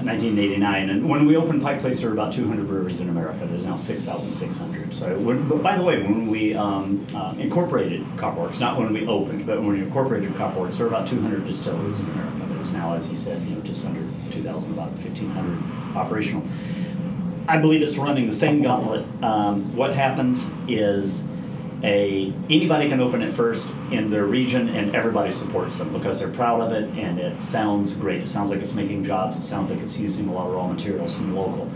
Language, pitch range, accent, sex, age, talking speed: English, 100-170 Hz, American, male, 40-59, 200 wpm